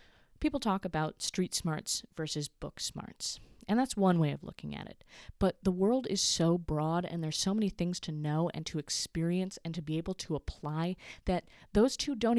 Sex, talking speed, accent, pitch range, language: female, 205 wpm, American, 155-190 Hz, English